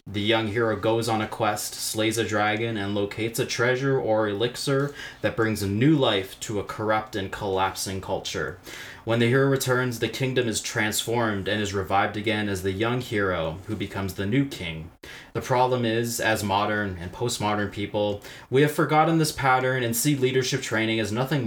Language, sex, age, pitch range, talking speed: English, male, 20-39, 100-125 Hz, 185 wpm